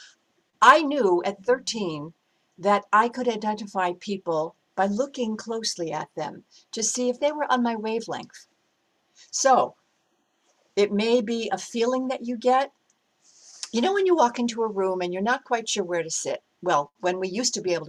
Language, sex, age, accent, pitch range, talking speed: English, female, 60-79, American, 175-235 Hz, 180 wpm